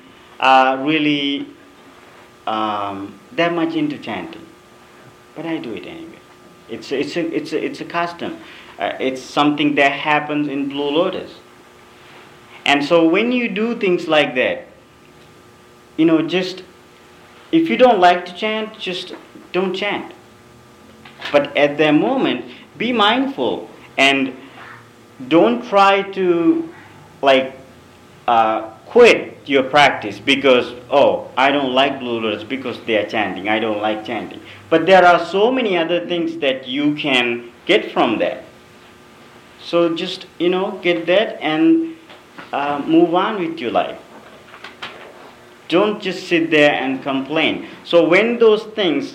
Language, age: English, 40-59